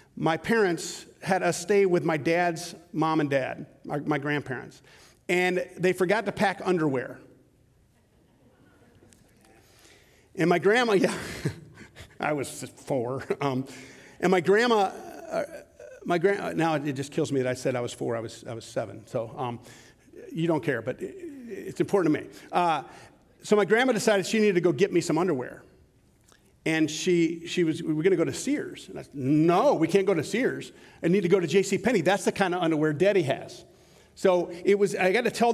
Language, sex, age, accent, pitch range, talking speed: English, male, 50-69, American, 155-200 Hz, 185 wpm